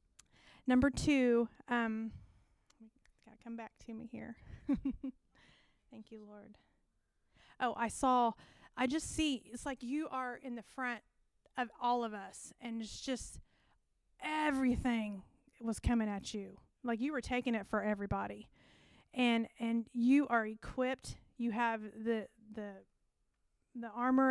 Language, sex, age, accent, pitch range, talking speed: English, female, 30-49, American, 225-255 Hz, 135 wpm